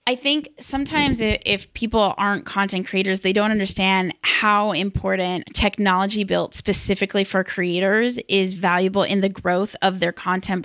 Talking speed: 145 wpm